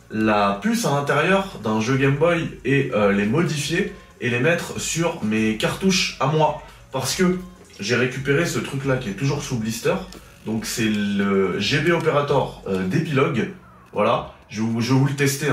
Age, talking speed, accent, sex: 20-39, 180 wpm, French, male